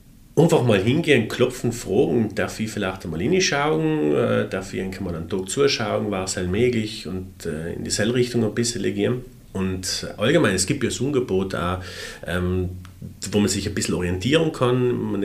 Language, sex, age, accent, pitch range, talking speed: German, male, 40-59, German, 95-120 Hz, 170 wpm